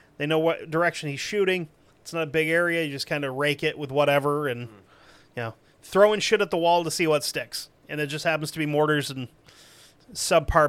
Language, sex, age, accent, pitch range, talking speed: English, male, 30-49, American, 150-195 Hz, 225 wpm